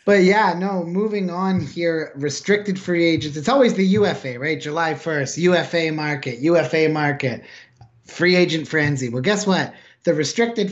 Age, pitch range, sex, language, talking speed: 30-49, 145-180 Hz, male, English, 155 wpm